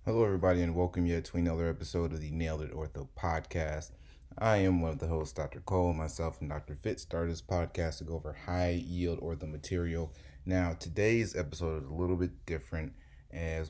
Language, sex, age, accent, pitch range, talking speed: English, male, 30-49, American, 75-90 Hz, 195 wpm